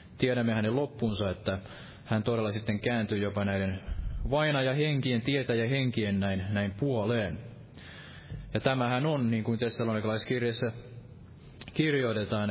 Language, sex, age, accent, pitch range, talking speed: Finnish, male, 20-39, native, 105-140 Hz, 130 wpm